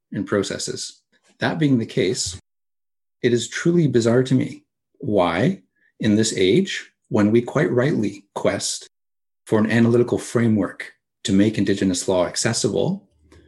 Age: 40-59